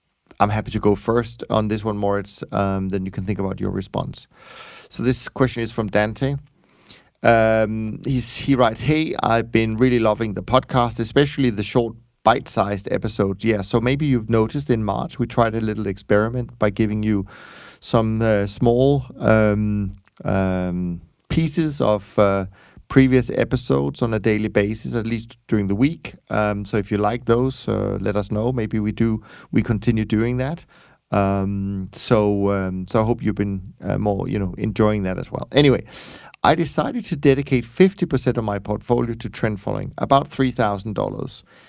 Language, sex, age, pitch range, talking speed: English, male, 30-49, 105-125 Hz, 175 wpm